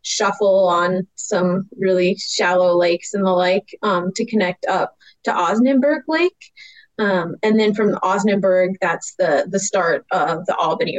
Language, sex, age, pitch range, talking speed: English, female, 20-39, 185-225 Hz, 155 wpm